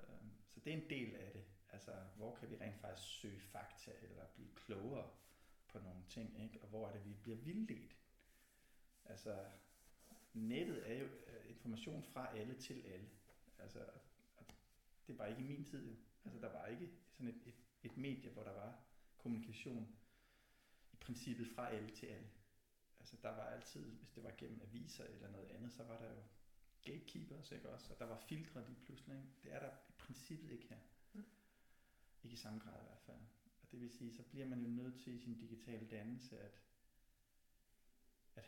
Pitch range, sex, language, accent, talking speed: 110-125 Hz, male, Danish, native, 180 wpm